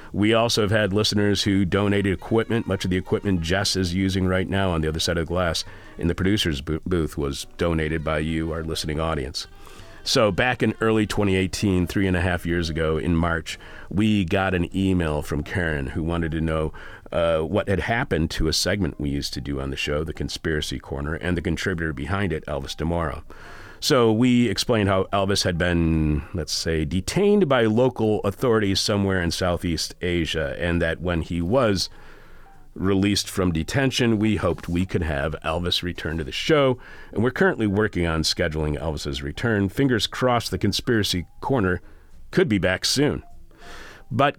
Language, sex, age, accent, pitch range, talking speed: English, male, 40-59, American, 80-105 Hz, 180 wpm